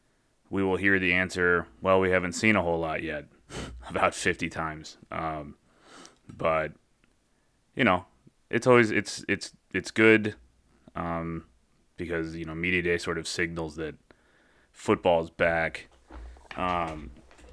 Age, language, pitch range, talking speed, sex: 30-49, English, 80-95 Hz, 135 wpm, male